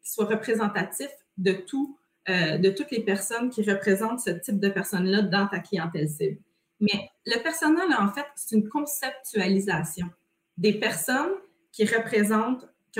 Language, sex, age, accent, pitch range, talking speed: French, female, 30-49, Canadian, 195-235 Hz, 150 wpm